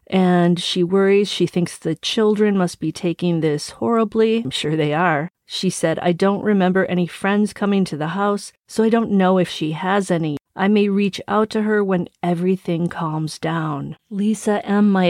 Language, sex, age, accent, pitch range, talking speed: English, female, 40-59, American, 170-205 Hz, 190 wpm